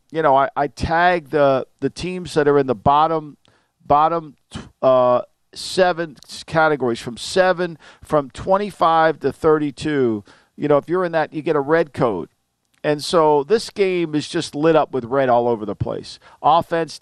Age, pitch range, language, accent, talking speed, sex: 50-69, 150-185 Hz, English, American, 180 wpm, male